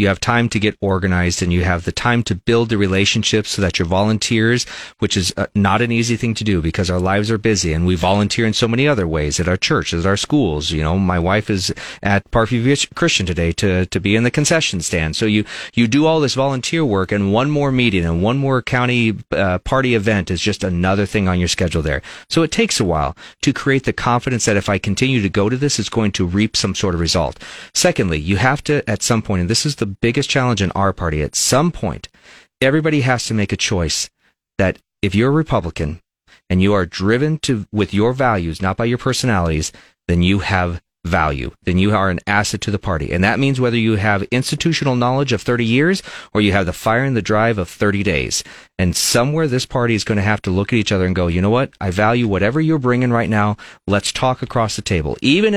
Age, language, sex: 40-59, English, male